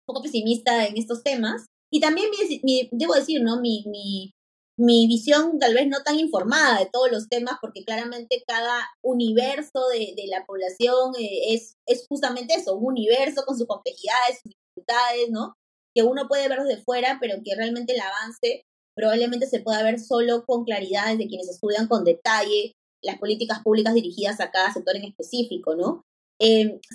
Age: 20-39